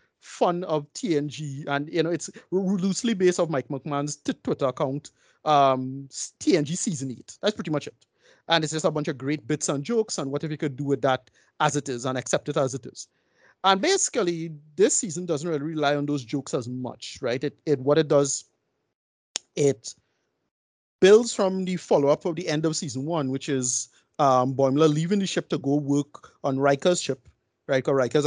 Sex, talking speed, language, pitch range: male, 200 wpm, English, 135-175 Hz